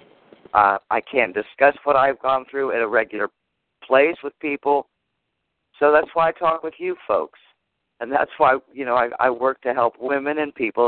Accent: American